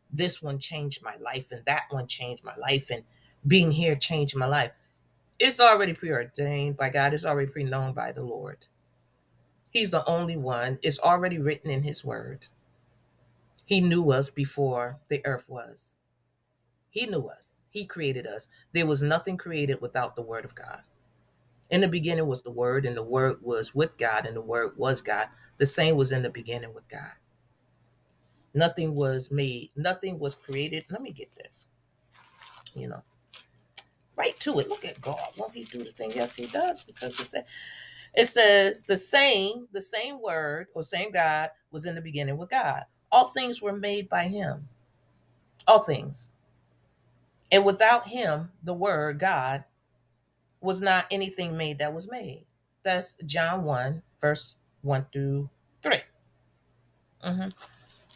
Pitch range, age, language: 130-180 Hz, 40-59, English